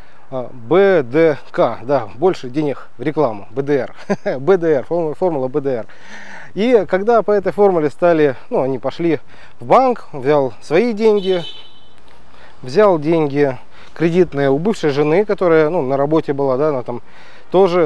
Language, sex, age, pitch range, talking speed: Russian, male, 30-49, 135-180 Hz, 125 wpm